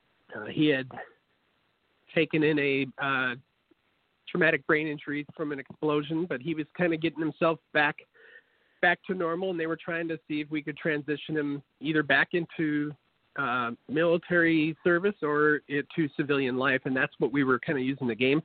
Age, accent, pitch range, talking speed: 40-59, American, 140-165 Hz, 180 wpm